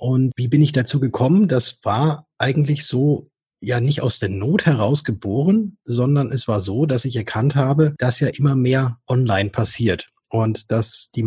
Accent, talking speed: German, 180 wpm